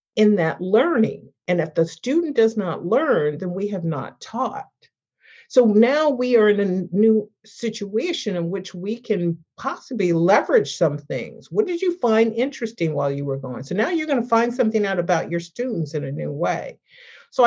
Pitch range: 175-245 Hz